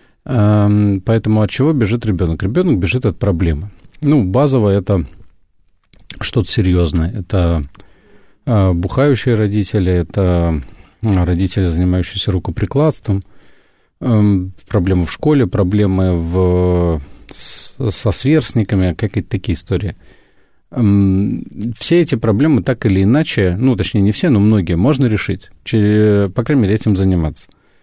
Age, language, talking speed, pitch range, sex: 40-59, Russian, 105 wpm, 95-120 Hz, male